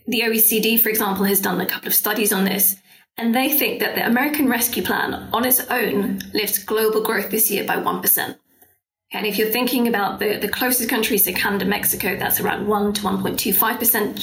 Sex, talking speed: female, 200 wpm